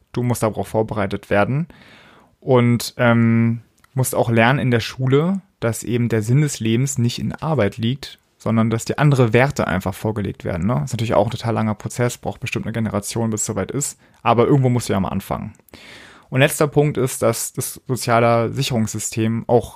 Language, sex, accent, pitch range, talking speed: German, male, German, 110-125 Hz, 195 wpm